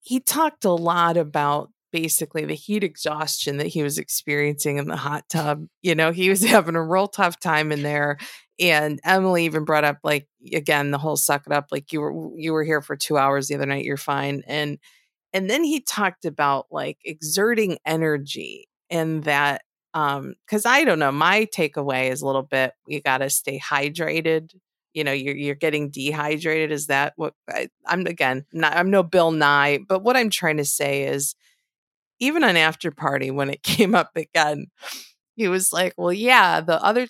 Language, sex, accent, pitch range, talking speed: English, female, American, 145-180 Hz, 195 wpm